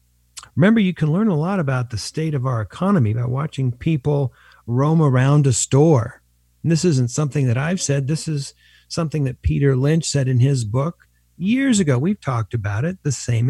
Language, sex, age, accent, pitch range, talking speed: English, male, 50-69, American, 110-150 Hz, 195 wpm